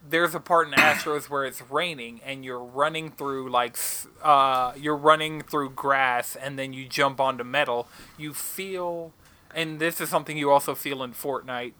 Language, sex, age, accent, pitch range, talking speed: English, male, 20-39, American, 130-165 Hz, 180 wpm